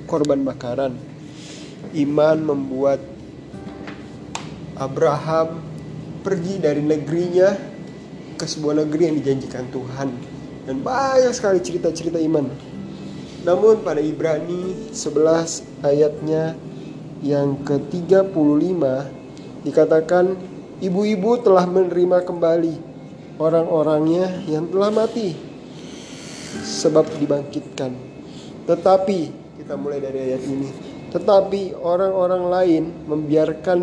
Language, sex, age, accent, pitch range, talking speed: Indonesian, male, 30-49, native, 145-180 Hz, 85 wpm